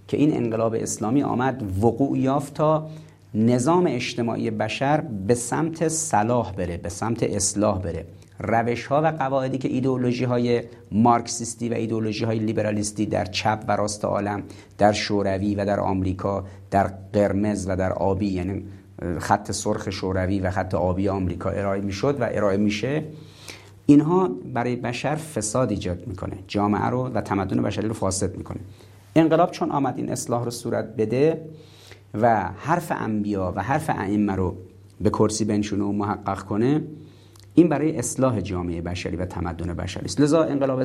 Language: Persian